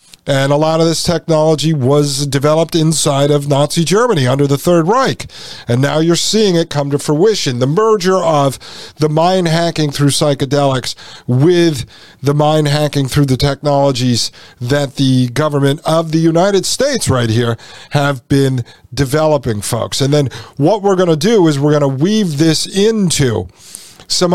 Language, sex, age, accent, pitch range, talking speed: English, male, 50-69, American, 135-160 Hz, 165 wpm